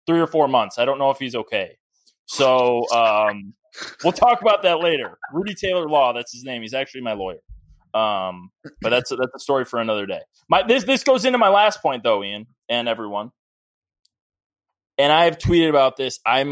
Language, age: English, 20-39